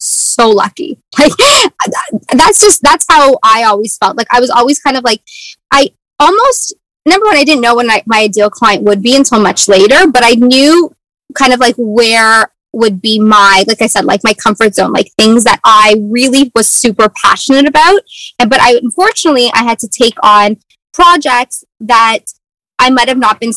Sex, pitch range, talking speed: female, 220-285 Hz, 190 wpm